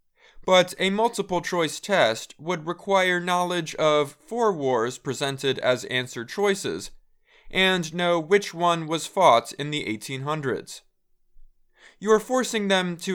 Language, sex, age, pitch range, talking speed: English, male, 20-39, 150-195 Hz, 130 wpm